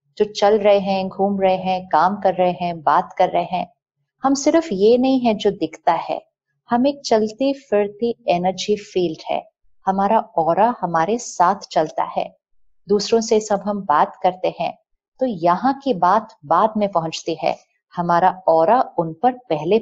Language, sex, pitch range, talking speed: Hindi, female, 170-240 Hz, 170 wpm